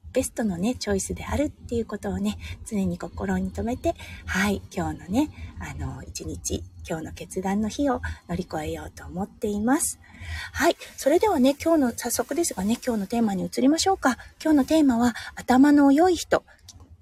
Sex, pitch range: female, 185-275 Hz